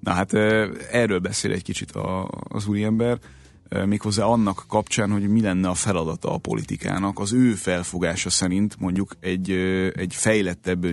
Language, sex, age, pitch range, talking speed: Hungarian, male, 30-49, 90-115 Hz, 150 wpm